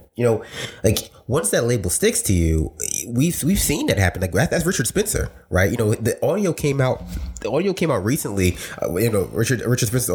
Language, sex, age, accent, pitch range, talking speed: English, male, 20-39, American, 90-110 Hz, 215 wpm